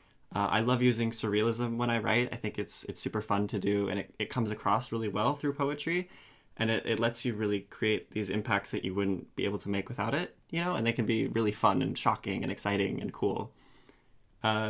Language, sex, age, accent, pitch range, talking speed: English, male, 20-39, American, 100-130 Hz, 235 wpm